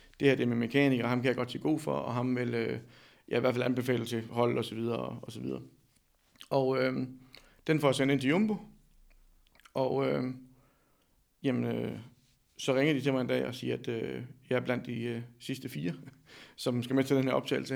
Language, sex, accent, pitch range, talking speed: Danish, male, native, 120-135 Hz, 235 wpm